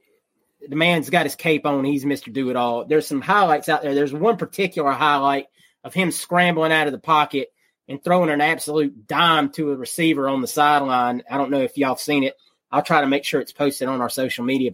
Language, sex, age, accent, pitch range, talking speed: English, male, 30-49, American, 150-235 Hz, 225 wpm